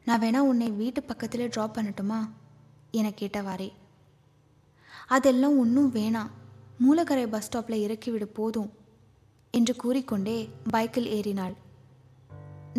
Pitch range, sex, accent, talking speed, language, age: 195-240 Hz, female, native, 100 wpm, Tamil, 20-39